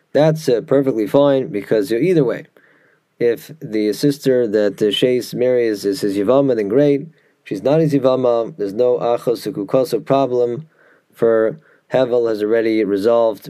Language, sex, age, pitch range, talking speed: English, male, 20-39, 110-140 Hz, 140 wpm